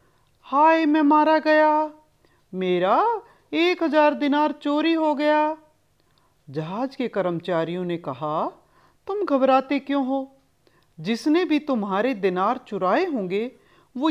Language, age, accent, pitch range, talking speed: Hindi, 50-69, native, 185-310 Hz, 115 wpm